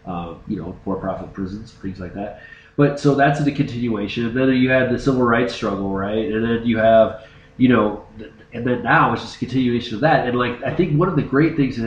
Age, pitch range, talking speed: 20-39, 105-135 Hz, 235 wpm